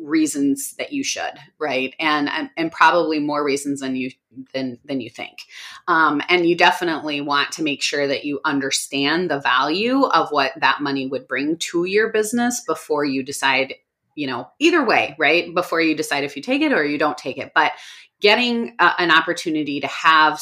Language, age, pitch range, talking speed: English, 30-49, 140-180 Hz, 190 wpm